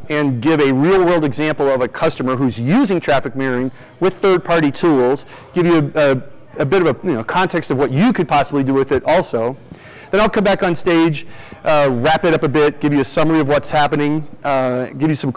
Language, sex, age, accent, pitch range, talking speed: English, male, 30-49, American, 140-165 Hz, 215 wpm